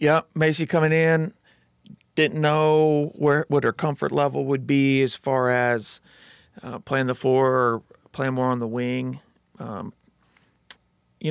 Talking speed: 150 wpm